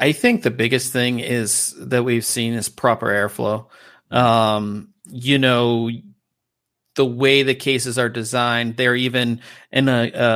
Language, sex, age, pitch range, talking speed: English, male, 40-59, 110-125 Hz, 150 wpm